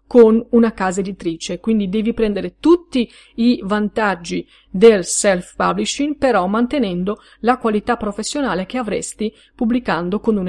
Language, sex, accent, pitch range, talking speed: Italian, female, native, 195-240 Hz, 130 wpm